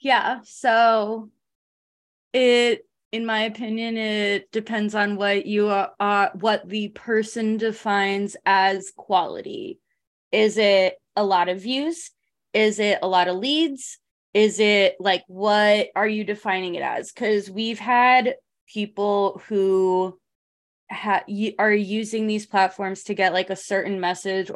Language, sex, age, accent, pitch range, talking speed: English, female, 20-39, American, 190-220 Hz, 135 wpm